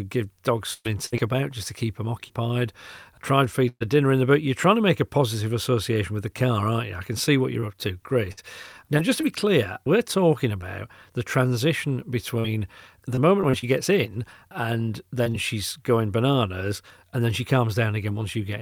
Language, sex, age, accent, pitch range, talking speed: English, male, 40-59, British, 105-135 Hz, 225 wpm